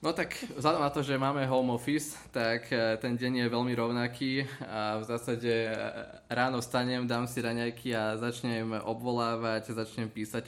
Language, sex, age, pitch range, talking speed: Slovak, male, 20-39, 110-120 Hz, 165 wpm